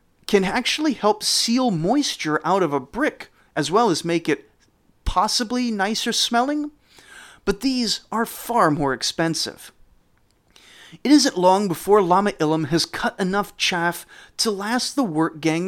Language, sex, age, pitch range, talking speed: English, male, 30-49, 155-235 Hz, 140 wpm